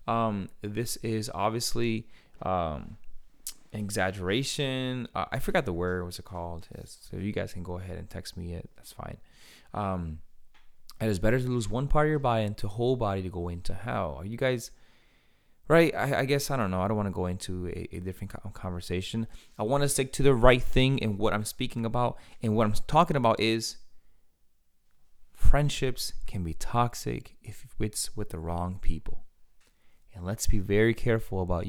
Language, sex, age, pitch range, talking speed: English, male, 20-39, 90-115 Hz, 190 wpm